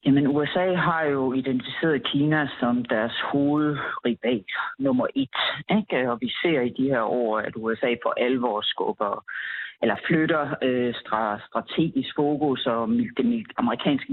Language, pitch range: Danish, 120-155 Hz